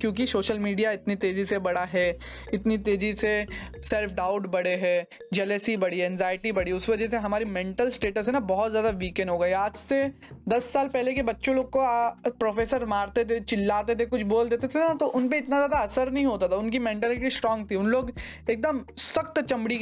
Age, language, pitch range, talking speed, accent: 20-39, Hindi, 200-245 Hz, 215 wpm, native